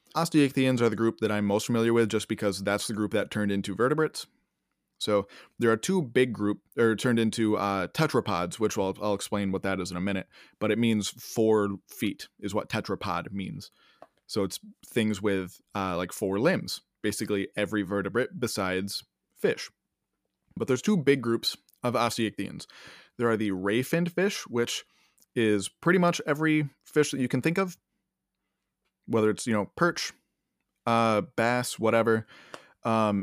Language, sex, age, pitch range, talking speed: English, male, 20-39, 105-130 Hz, 170 wpm